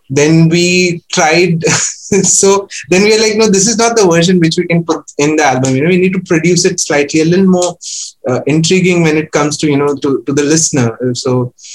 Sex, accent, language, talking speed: male, Indian, English, 230 wpm